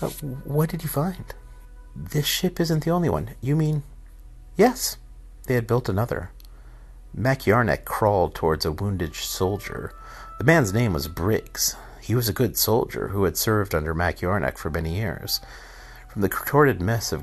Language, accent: English, American